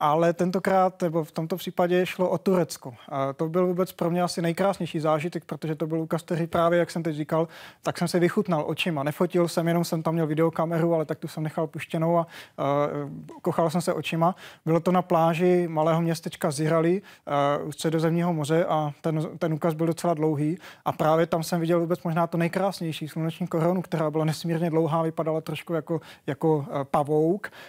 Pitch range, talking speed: 160-175 Hz, 195 wpm